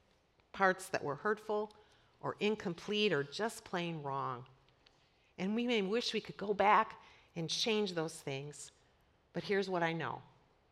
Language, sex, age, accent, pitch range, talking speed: English, female, 40-59, American, 160-220 Hz, 150 wpm